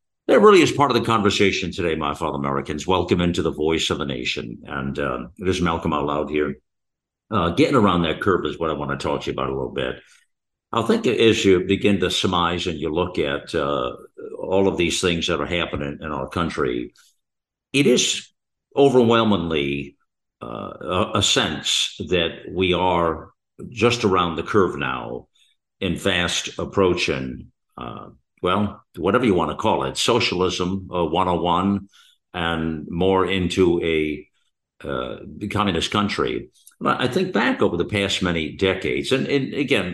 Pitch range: 80-105 Hz